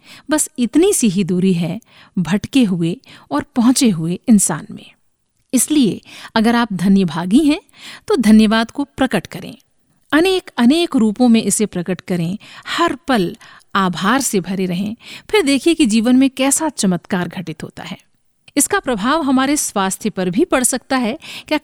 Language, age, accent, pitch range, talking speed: Hindi, 50-69, native, 195-270 Hz, 155 wpm